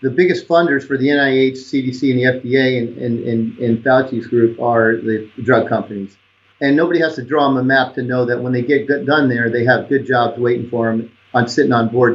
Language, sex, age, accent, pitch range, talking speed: English, male, 40-59, American, 115-135 Hz, 215 wpm